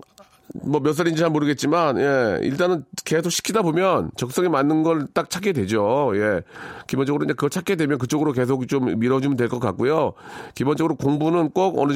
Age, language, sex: 40-59, Korean, male